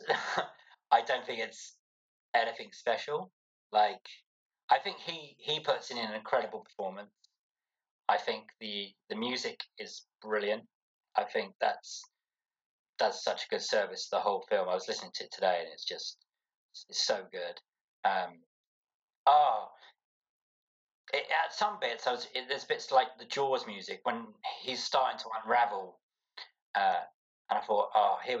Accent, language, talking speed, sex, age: British, English, 155 wpm, male, 30-49